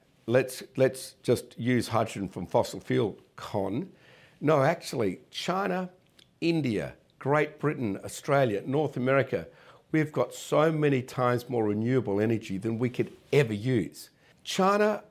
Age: 50-69